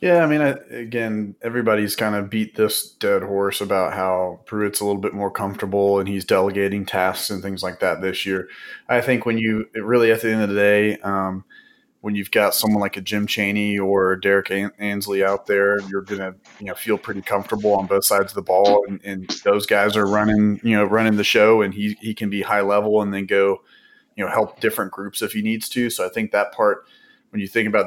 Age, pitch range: 30-49, 100-105 Hz